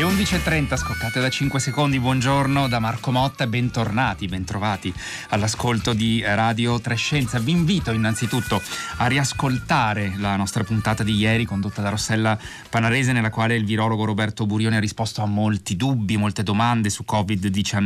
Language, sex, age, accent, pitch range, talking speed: Italian, male, 30-49, native, 100-120 Hz, 150 wpm